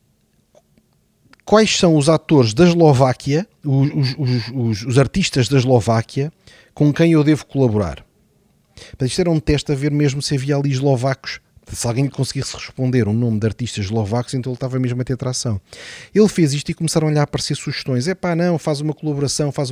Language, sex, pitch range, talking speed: Portuguese, male, 125-155 Hz, 190 wpm